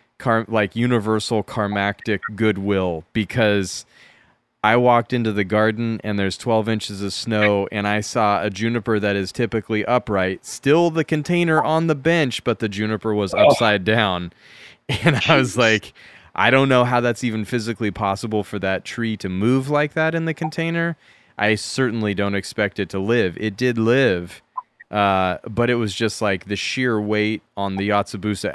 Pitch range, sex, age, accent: 100-115 Hz, male, 20-39, American